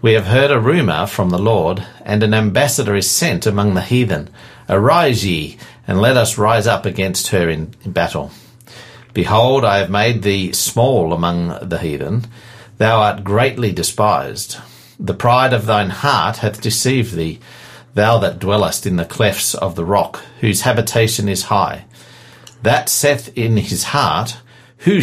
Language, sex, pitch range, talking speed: English, male, 95-120 Hz, 160 wpm